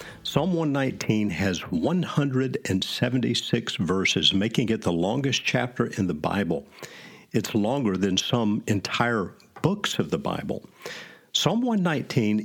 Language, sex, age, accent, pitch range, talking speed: English, male, 50-69, American, 95-120 Hz, 115 wpm